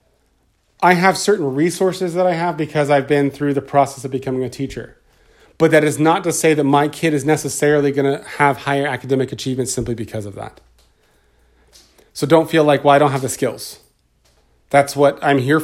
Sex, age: male, 30-49